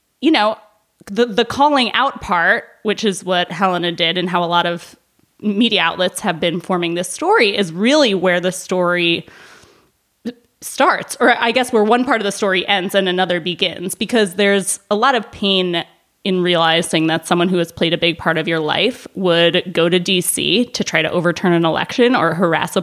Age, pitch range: 20-39, 165-210 Hz